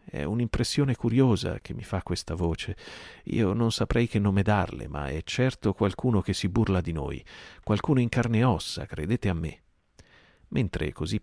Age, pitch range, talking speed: 40-59, 80-105 Hz, 175 wpm